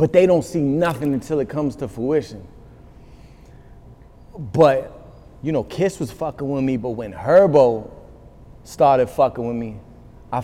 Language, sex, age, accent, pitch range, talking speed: English, male, 30-49, American, 120-140 Hz, 150 wpm